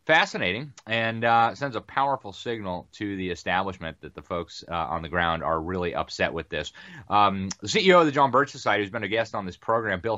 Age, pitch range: 30-49, 95-120 Hz